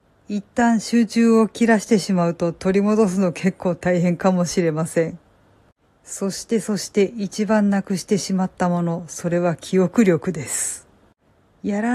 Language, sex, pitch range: Japanese, female, 185-235 Hz